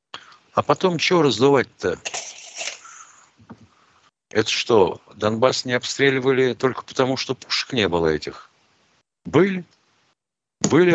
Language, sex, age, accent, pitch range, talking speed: Russian, male, 60-79, native, 105-150 Hz, 100 wpm